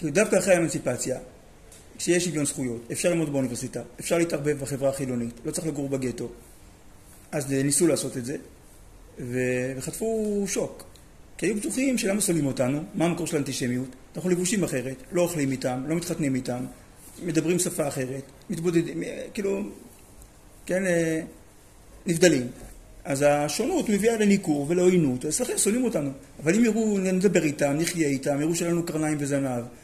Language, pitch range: Hebrew, 135-185 Hz